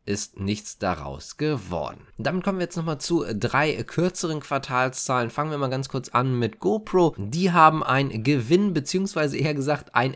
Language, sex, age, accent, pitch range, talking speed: German, male, 20-39, German, 115-155 Hz, 170 wpm